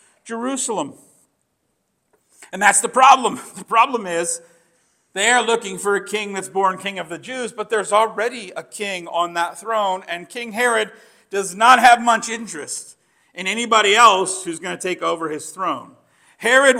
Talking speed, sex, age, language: 165 wpm, male, 50-69, English